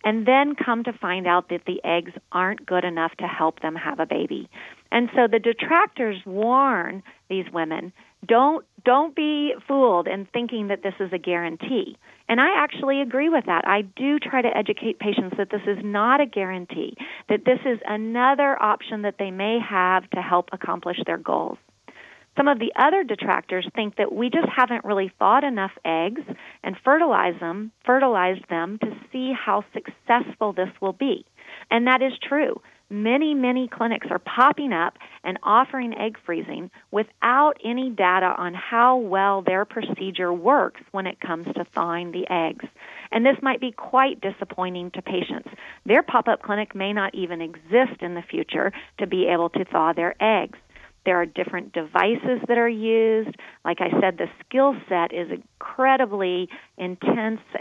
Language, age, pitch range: English, 30-49, 180-250 Hz